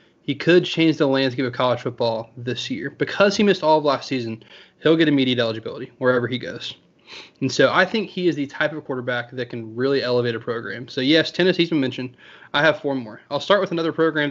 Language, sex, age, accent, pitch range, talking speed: English, male, 20-39, American, 130-160 Hz, 230 wpm